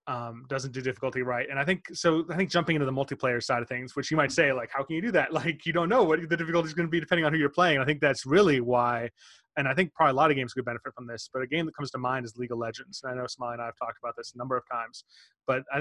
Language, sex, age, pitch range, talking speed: English, male, 30-49, 125-155 Hz, 330 wpm